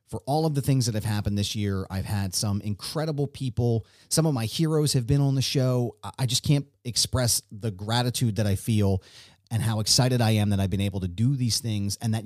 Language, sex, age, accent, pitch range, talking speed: English, male, 30-49, American, 105-145 Hz, 235 wpm